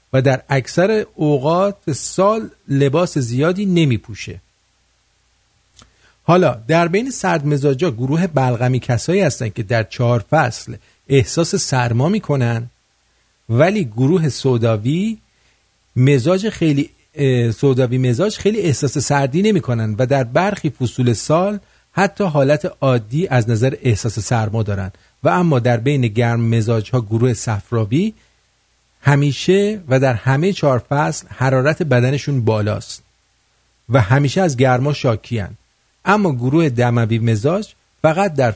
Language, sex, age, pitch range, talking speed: English, male, 50-69, 115-165 Hz, 125 wpm